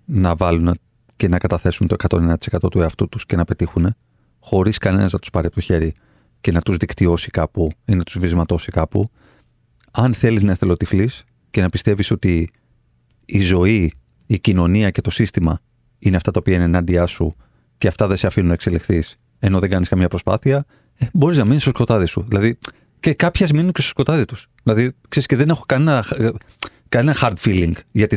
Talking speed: 190 wpm